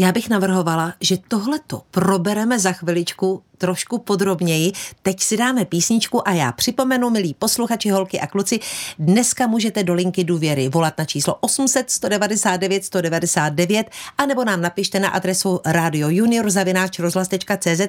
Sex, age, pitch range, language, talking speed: female, 50-69, 175-225 Hz, Czech, 135 wpm